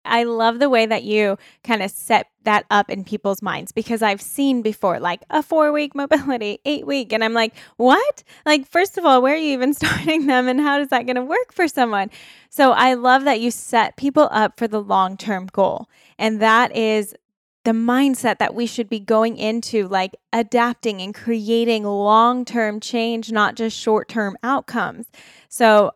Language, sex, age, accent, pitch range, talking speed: English, female, 10-29, American, 205-245 Hz, 185 wpm